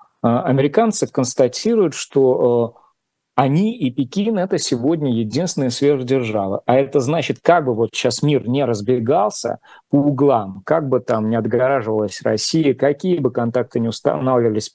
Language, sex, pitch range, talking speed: Russian, male, 115-140 Hz, 140 wpm